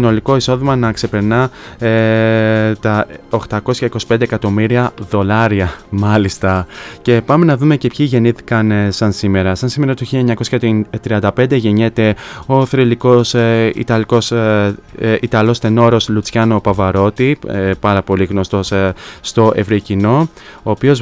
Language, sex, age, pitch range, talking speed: Greek, male, 20-39, 105-115 Hz, 130 wpm